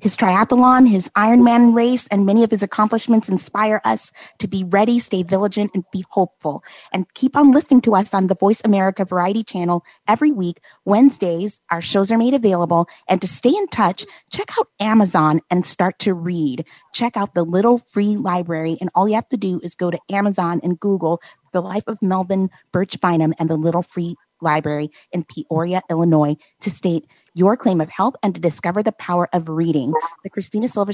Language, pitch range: English, 170-210 Hz